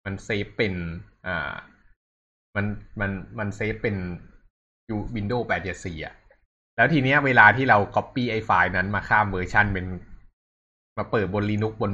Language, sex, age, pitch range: Thai, male, 20-39, 90-110 Hz